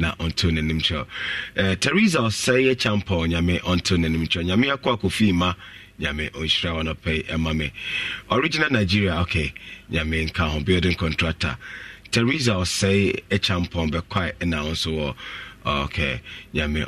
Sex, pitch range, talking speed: male, 80-100 Hz, 140 wpm